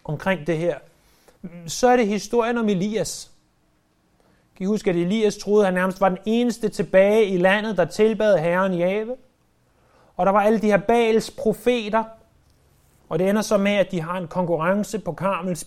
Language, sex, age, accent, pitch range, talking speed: Danish, male, 30-49, native, 180-225 Hz, 185 wpm